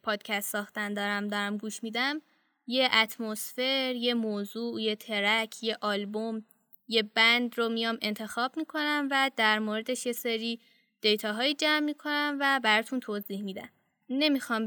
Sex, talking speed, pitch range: female, 135 wpm, 210-245 Hz